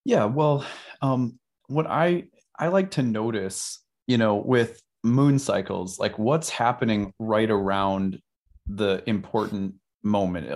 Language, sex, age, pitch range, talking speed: English, male, 30-49, 95-125 Hz, 125 wpm